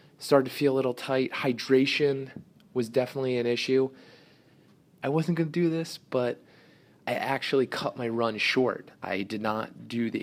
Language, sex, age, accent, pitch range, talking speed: English, male, 30-49, American, 110-140 Hz, 170 wpm